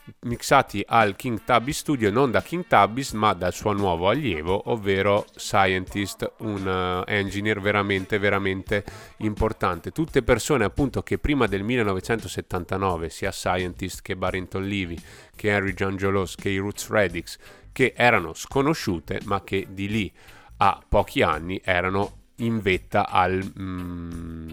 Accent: native